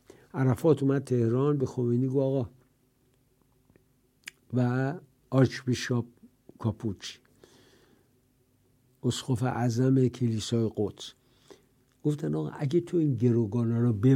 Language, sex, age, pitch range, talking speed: English, male, 60-79, 125-165 Hz, 95 wpm